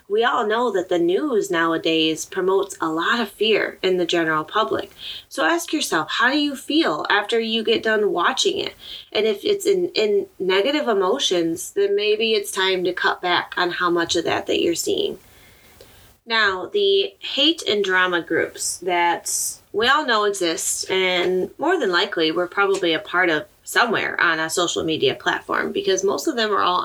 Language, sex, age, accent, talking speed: English, female, 20-39, American, 185 wpm